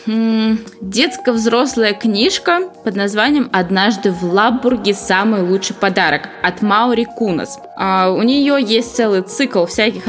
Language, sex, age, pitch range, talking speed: Russian, female, 20-39, 190-245 Hz, 115 wpm